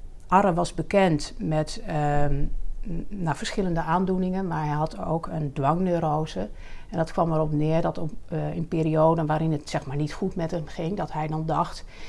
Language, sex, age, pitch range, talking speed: Dutch, female, 60-79, 145-165 Hz, 165 wpm